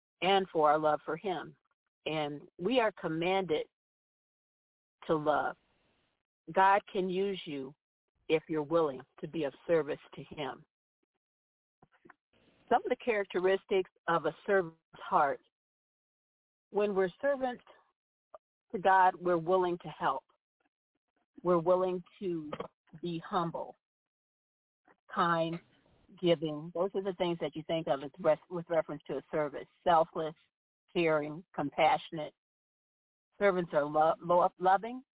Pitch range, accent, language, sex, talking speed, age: 160-190 Hz, American, English, female, 115 wpm, 50-69